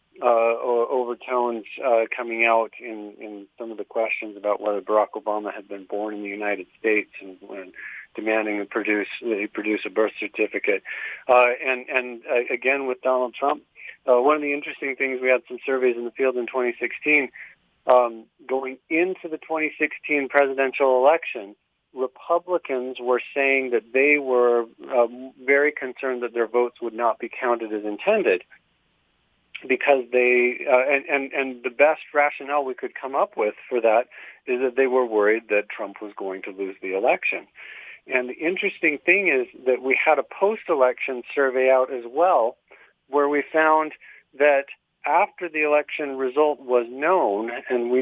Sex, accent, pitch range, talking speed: male, American, 115-140 Hz, 170 wpm